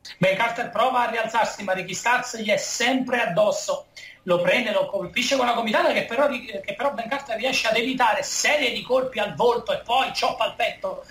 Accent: native